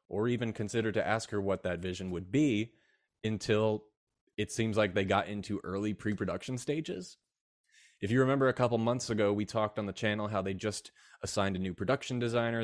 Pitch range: 100-125 Hz